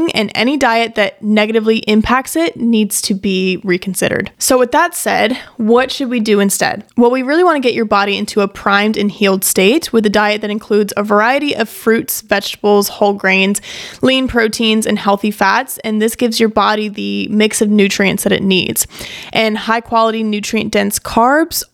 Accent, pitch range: American, 205-240 Hz